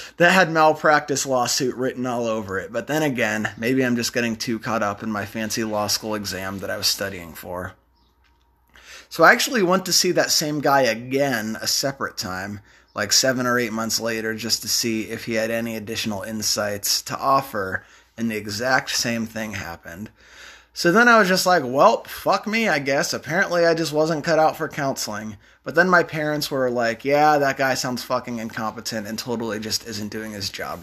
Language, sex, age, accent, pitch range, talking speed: English, male, 20-39, American, 110-140 Hz, 200 wpm